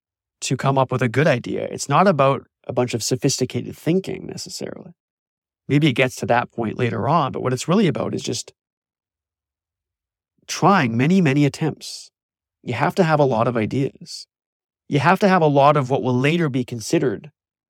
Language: English